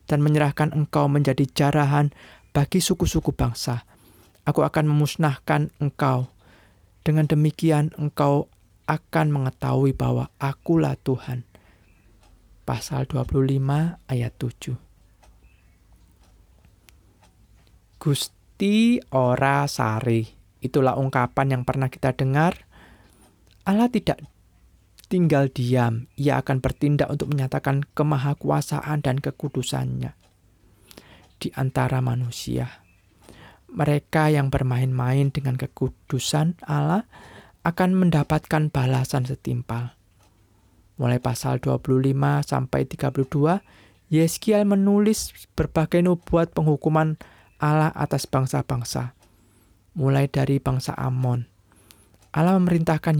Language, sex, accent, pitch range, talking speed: Indonesian, male, native, 110-150 Hz, 85 wpm